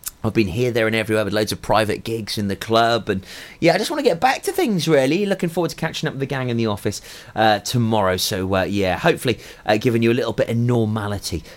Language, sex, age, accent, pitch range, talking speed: English, male, 30-49, British, 105-150 Hz, 260 wpm